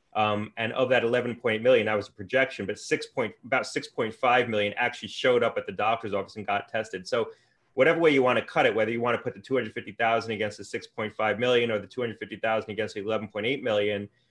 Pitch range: 105-125 Hz